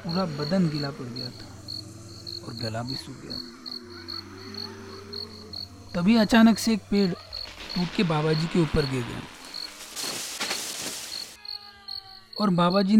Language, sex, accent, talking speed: Hindi, male, native, 90 wpm